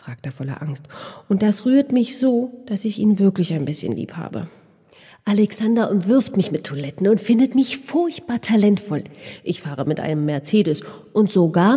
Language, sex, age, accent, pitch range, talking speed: German, female, 40-59, German, 155-220 Hz, 175 wpm